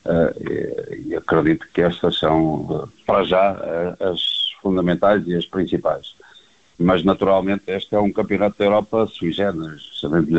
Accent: Portuguese